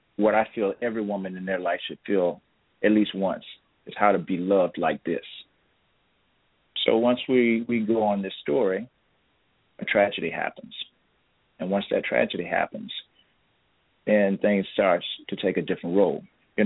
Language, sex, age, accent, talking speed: English, male, 40-59, American, 160 wpm